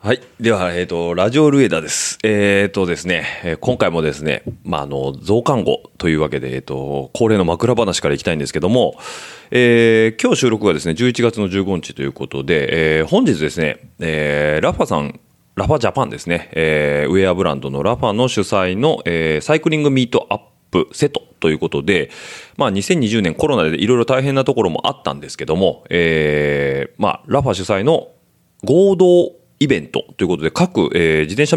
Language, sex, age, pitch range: Japanese, male, 30-49, 75-125 Hz